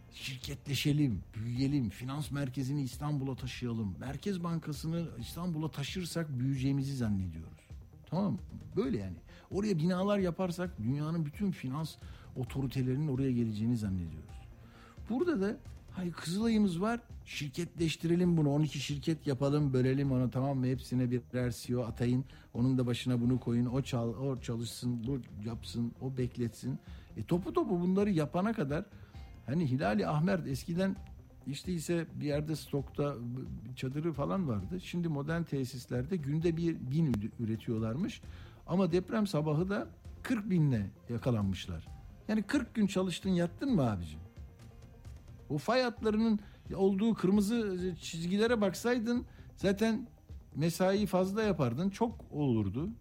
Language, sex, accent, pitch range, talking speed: Turkish, male, native, 120-180 Hz, 120 wpm